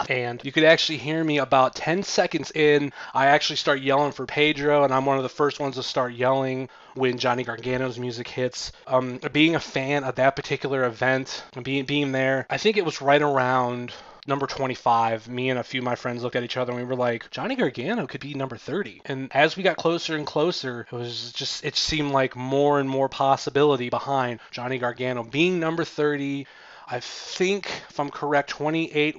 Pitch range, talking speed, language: 130-150 Hz, 205 wpm, English